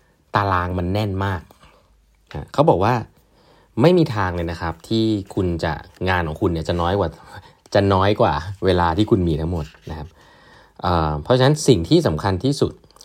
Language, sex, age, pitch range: Thai, male, 20-39, 85-110 Hz